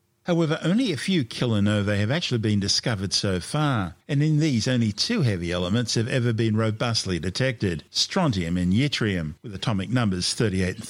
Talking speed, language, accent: 170 wpm, English, Australian